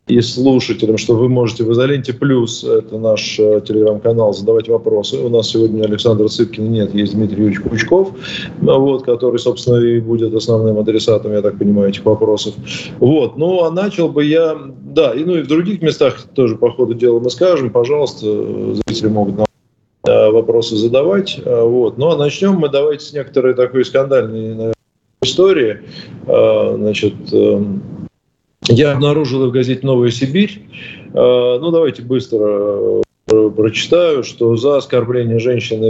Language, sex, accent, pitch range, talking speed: Russian, male, native, 115-150 Hz, 145 wpm